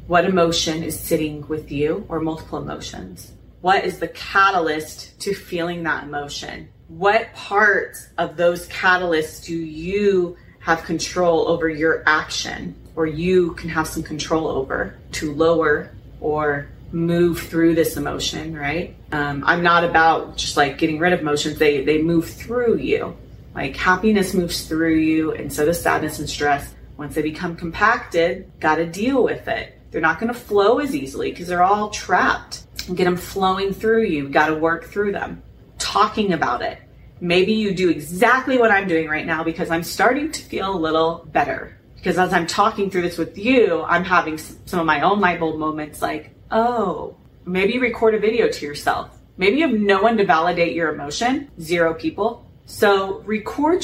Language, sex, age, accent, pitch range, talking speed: English, female, 30-49, American, 160-195 Hz, 175 wpm